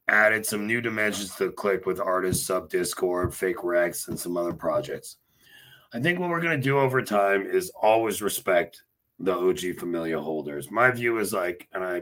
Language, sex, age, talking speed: English, male, 40-59, 190 wpm